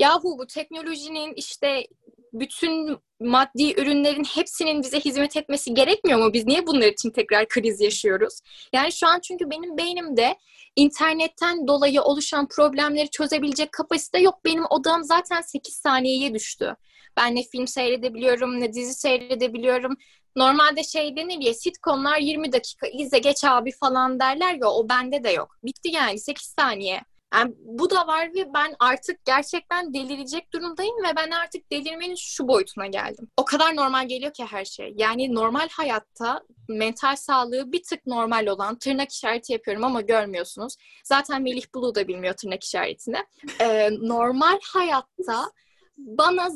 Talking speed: 150 wpm